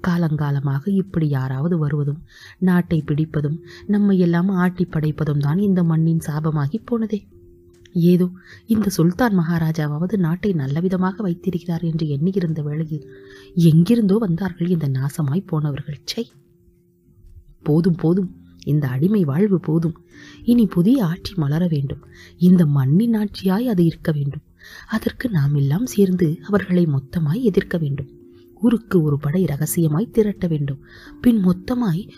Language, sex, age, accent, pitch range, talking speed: Tamil, female, 30-49, native, 150-205 Hz, 110 wpm